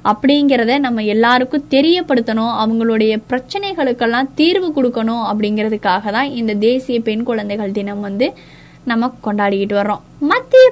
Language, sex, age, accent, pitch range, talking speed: Tamil, female, 20-39, native, 215-280 Hz, 110 wpm